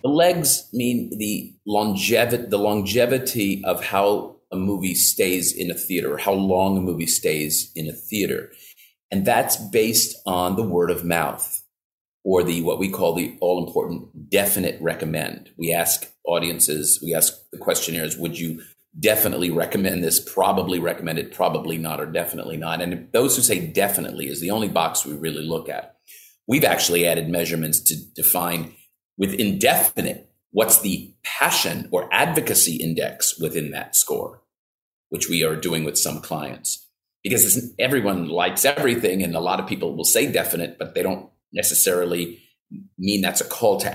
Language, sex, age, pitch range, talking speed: English, male, 40-59, 85-115 Hz, 165 wpm